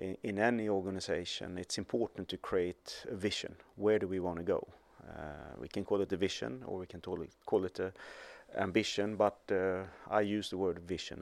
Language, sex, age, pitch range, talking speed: English, male, 30-49, 95-120 Hz, 205 wpm